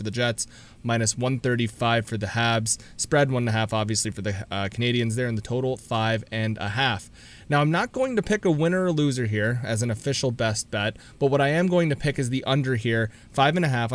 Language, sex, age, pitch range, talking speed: English, male, 30-49, 110-140 Hz, 230 wpm